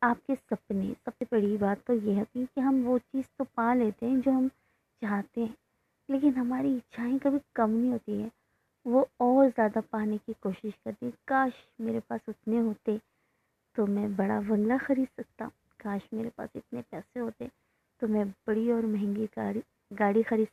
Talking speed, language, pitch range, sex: 175 wpm, Hindi, 210-245 Hz, female